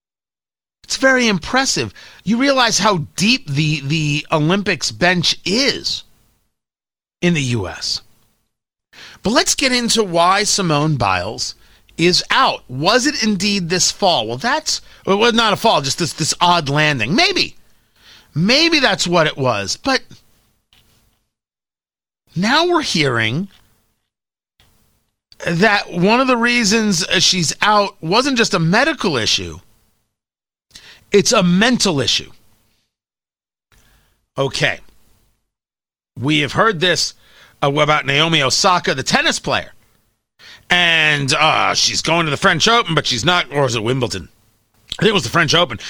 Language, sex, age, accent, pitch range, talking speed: English, male, 40-59, American, 125-210 Hz, 130 wpm